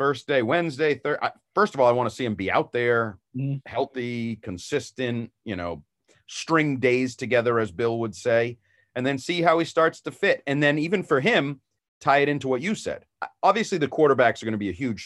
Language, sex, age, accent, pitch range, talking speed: English, male, 40-59, American, 105-135 Hz, 215 wpm